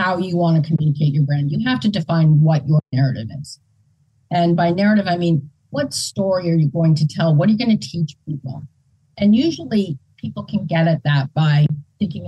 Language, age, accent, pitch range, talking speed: English, 40-59, American, 140-185 Hz, 210 wpm